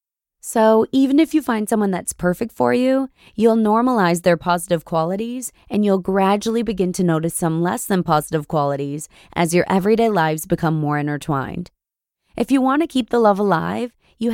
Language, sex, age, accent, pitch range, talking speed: English, female, 20-39, American, 175-235 Hz, 175 wpm